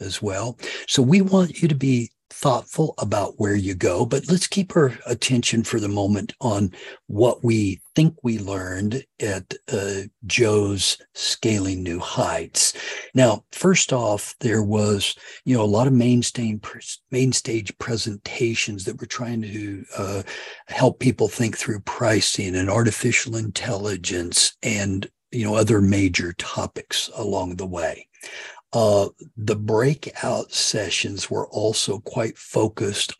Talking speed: 140 wpm